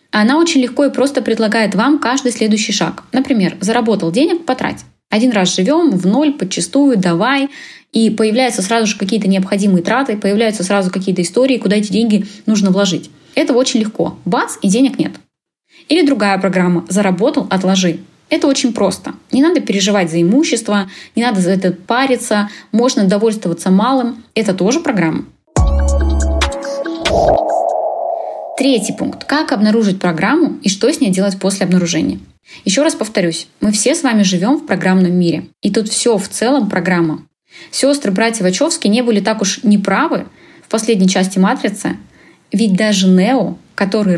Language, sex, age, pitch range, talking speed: Russian, female, 20-39, 190-255 Hz, 155 wpm